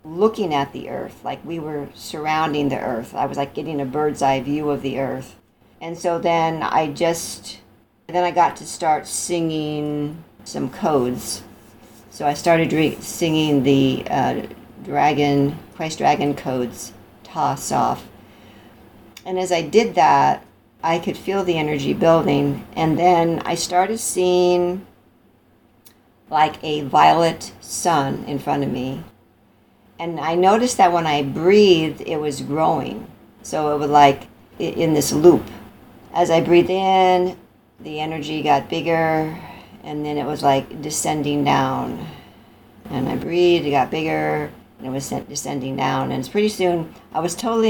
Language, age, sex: English, 50-69, female